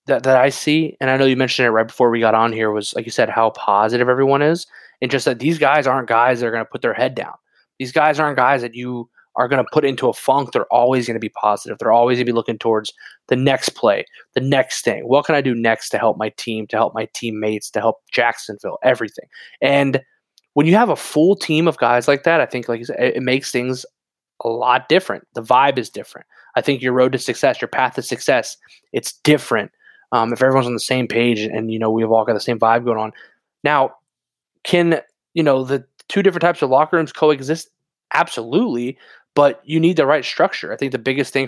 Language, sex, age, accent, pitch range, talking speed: English, male, 20-39, American, 115-145 Hz, 245 wpm